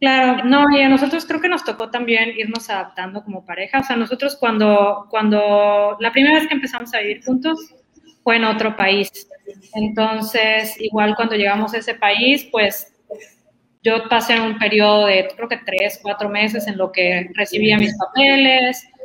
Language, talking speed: Spanish, 175 wpm